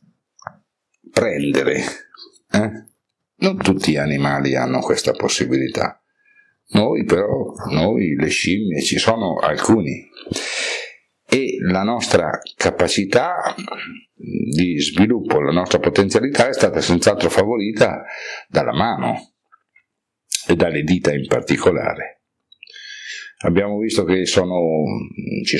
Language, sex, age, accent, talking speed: Italian, male, 60-79, native, 95 wpm